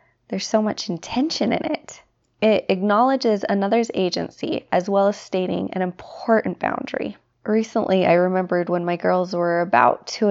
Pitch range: 180-225 Hz